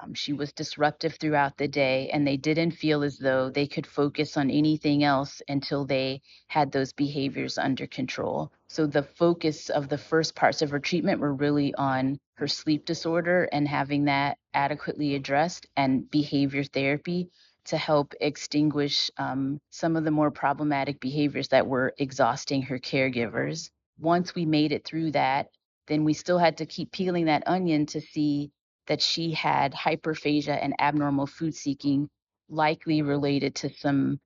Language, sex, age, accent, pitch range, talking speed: English, female, 30-49, American, 140-155 Hz, 165 wpm